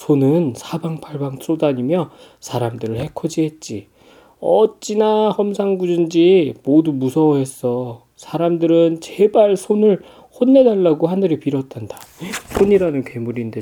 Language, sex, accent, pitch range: Korean, male, native, 125-200 Hz